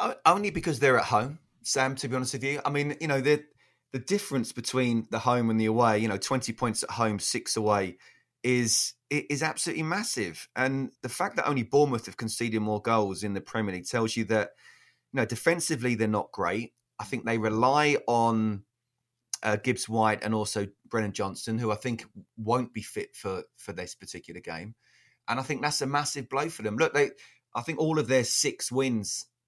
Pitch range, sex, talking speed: 110-135 Hz, male, 205 wpm